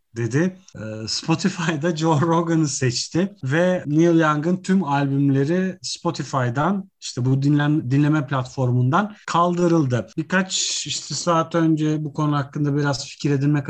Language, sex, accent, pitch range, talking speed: Turkish, male, native, 135-175 Hz, 120 wpm